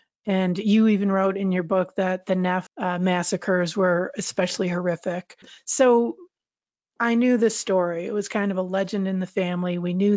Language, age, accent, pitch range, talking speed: English, 40-59, American, 180-200 Hz, 185 wpm